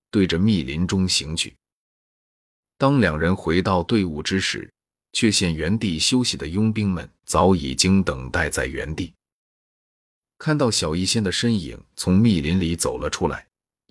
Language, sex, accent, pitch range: Chinese, male, native, 85-105 Hz